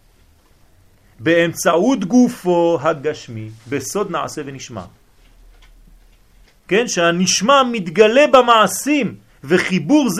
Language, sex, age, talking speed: French, male, 40-59, 70 wpm